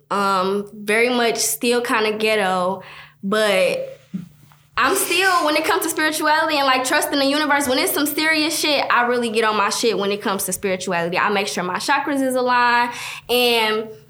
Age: 10-29